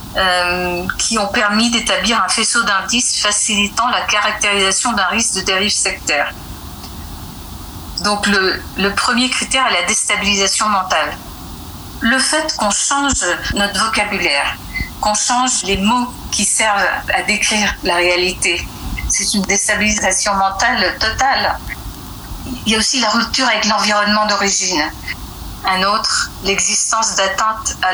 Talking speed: 125 wpm